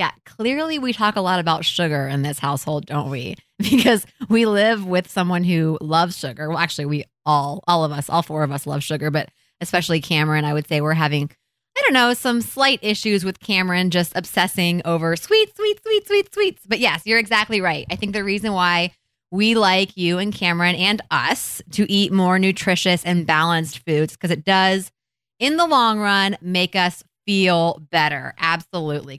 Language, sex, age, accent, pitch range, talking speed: English, female, 20-39, American, 155-200 Hz, 195 wpm